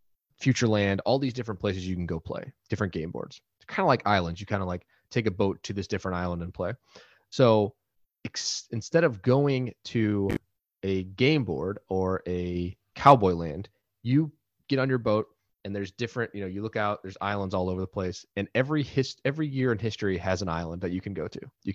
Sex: male